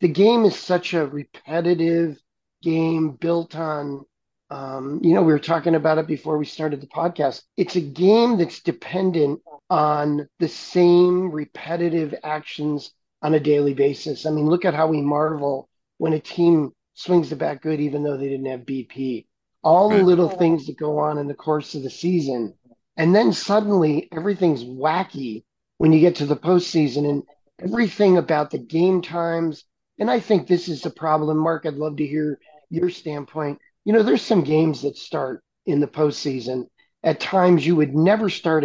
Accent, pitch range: American, 150-180 Hz